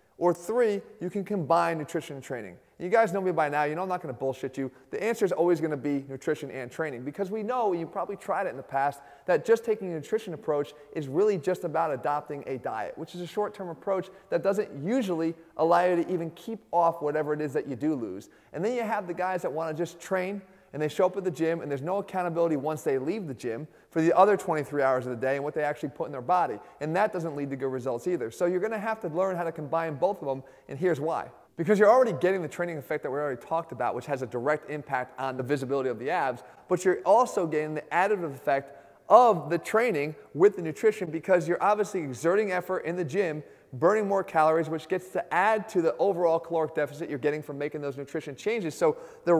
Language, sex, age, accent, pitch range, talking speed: English, male, 30-49, American, 150-195 Hz, 250 wpm